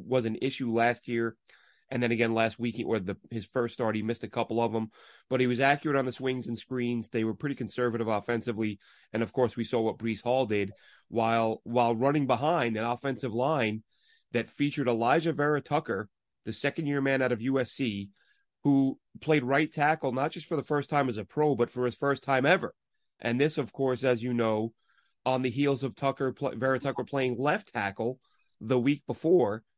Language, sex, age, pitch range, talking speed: English, male, 30-49, 115-140 Hz, 210 wpm